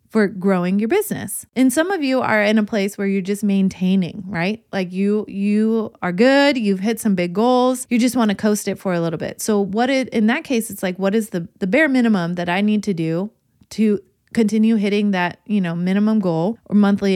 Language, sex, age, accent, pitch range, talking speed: English, female, 20-39, American, 190-245 Hz, 230 wpm